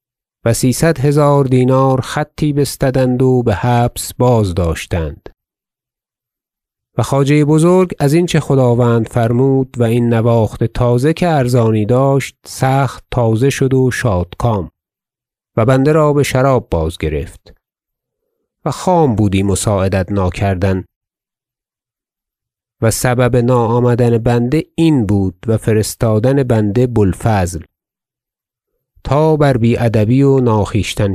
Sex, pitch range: male, 100-130 Hz